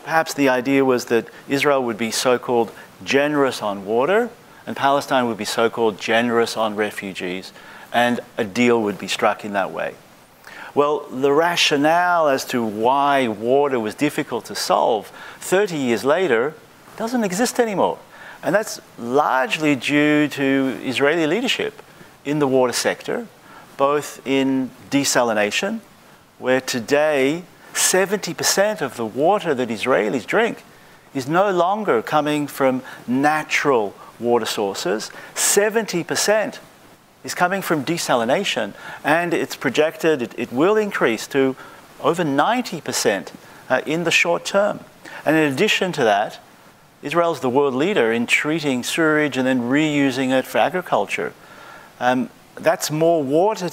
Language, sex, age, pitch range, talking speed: English, male, 50-69, 125-170 Hz, 135 wpm